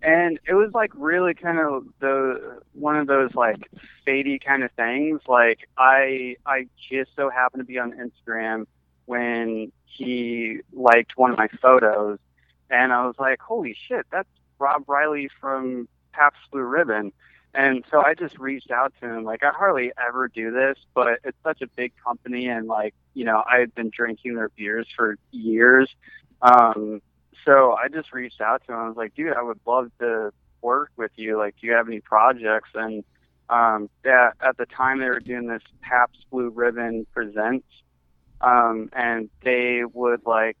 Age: 30-49